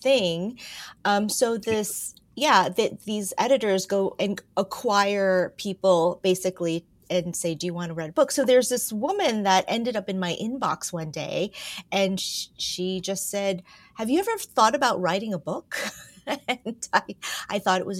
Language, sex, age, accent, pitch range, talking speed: English, female, 30-49, American, 185-245 Hz, 175 wpm